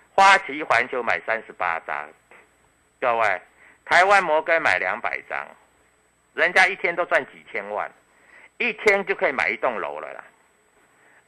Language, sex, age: Chinese, male, 50-69